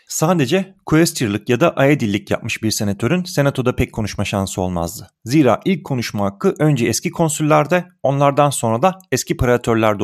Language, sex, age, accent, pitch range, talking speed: Turkish, male, 40-59, native, 110-150 Hz, 150 wpm